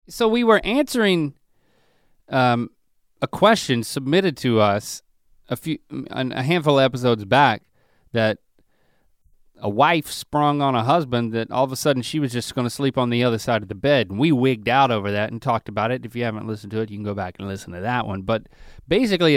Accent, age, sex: American, 30-49, male